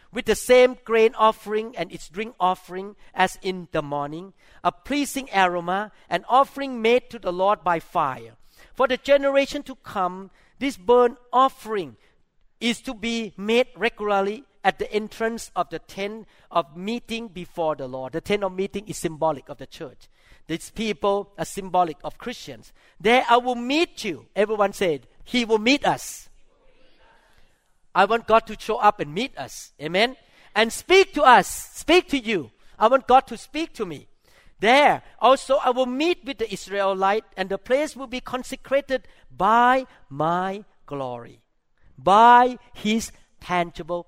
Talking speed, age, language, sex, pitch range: 160 wpm, 50-69, English, male, 185-250 Hz